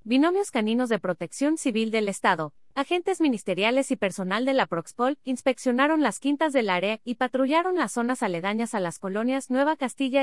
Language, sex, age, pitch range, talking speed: Spanish, female, 30-49, 190-265 Hz, 170 wpm